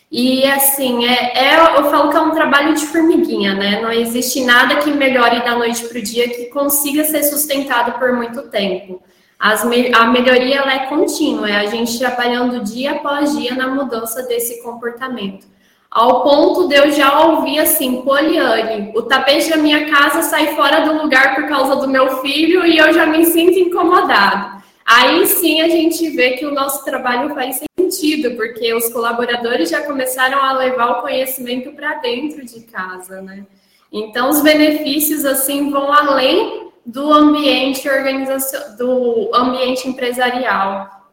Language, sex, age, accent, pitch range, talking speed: Portuguese, female, 10-29, Brazilian, 235-295 Hz, 165 wpm